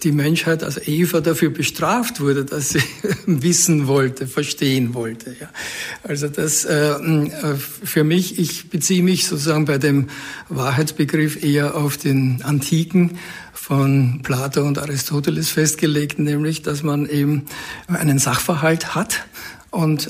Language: German